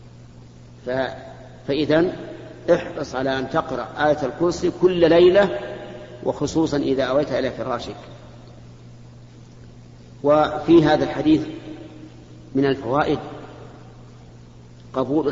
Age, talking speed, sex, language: 50-69, 80 wpm, male, Arabic